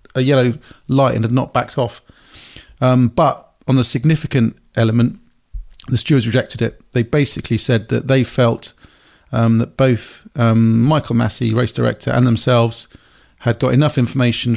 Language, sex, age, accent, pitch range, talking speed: English, male, 40-59, British, 120-135 Hz, 155 wpm